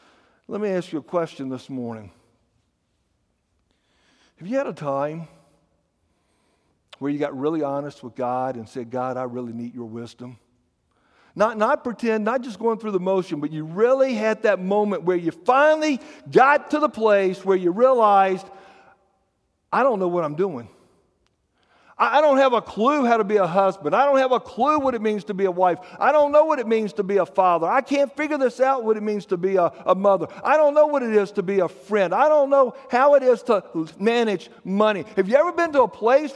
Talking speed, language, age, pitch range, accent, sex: 215 wpm, English, 60-79, 180-270 Hz, American, male